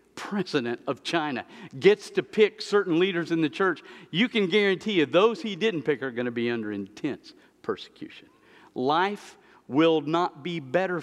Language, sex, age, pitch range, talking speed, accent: English, male, 50-69, 125-200 Hz, 170 wpm, American